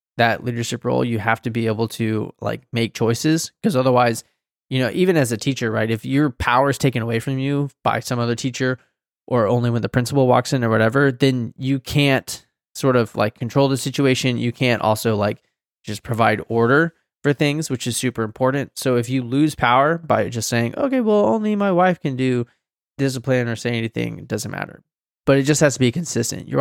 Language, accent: English, American